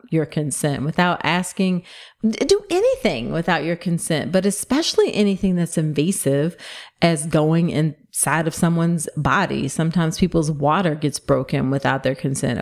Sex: female